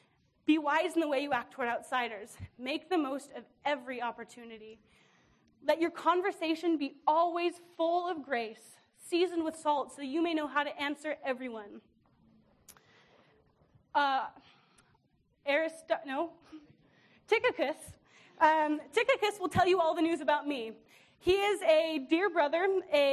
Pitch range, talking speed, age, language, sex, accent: 270-335 Hz, 145 wpm, 20-39, English, female, American